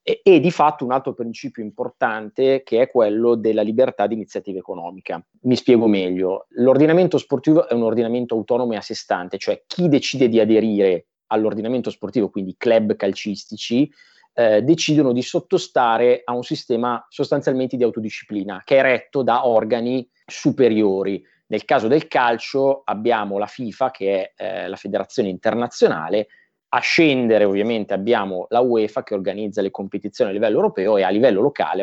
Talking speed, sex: 160 wpm, male